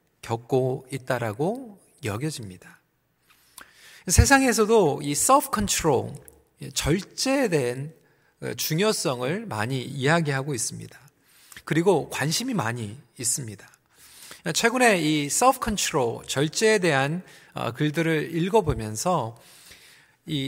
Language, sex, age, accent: Korean, male, 40-59, native